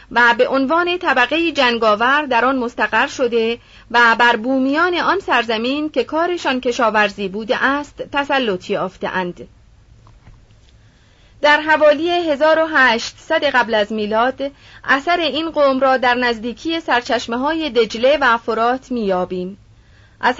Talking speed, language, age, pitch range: 120 wpm, Persian, 30-49, 220-285 Hz